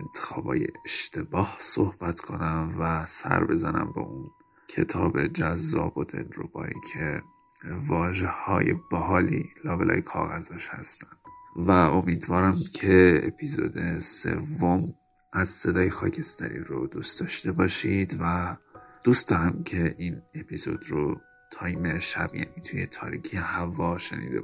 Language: Persian